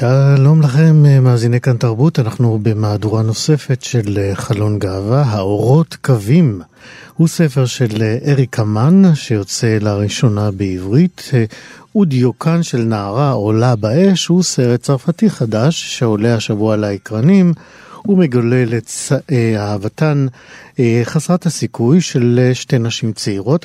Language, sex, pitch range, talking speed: Hebrew, male, 115-150 Hz, 115 wpm